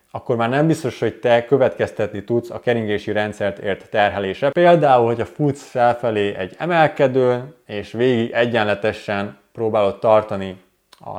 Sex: male